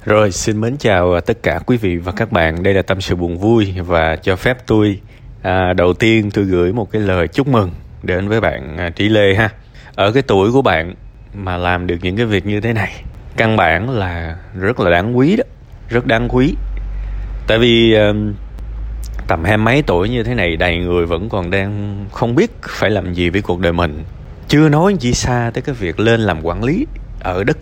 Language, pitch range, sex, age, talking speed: Vietnamese, 90-120 Hz, male, 20-39, 215 wpm